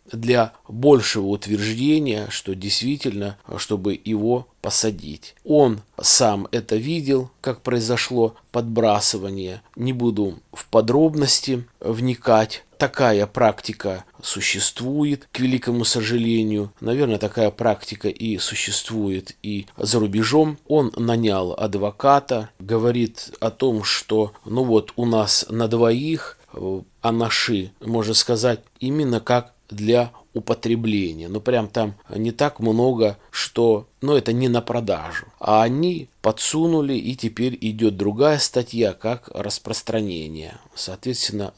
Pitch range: 105-125 Hz